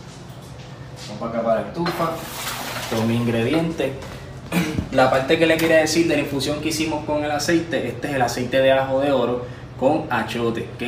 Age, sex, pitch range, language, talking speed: 20-39, male, 120-140 Hz, Spanish, 180 wpm